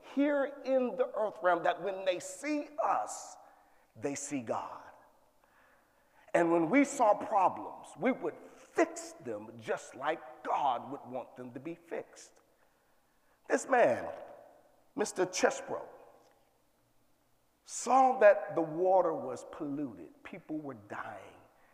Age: 50-69